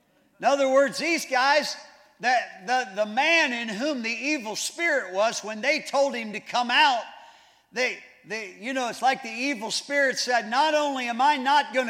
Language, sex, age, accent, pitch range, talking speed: English, male, 50-69, American, 245-280 Hz, 190 wpm